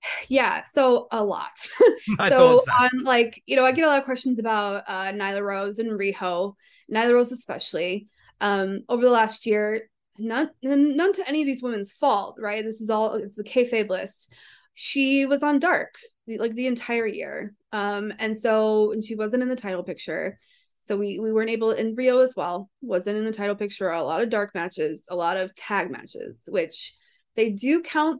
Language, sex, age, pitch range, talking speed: English, female, 20-39, 205-260 Hz, 195 wpm